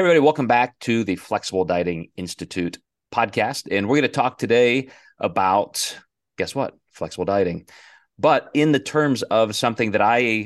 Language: English